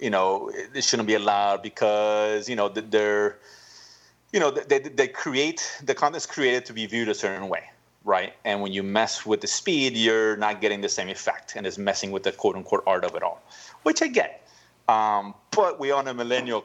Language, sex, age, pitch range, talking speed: English, male, 30-49, 105-140 Hz, 215 wpm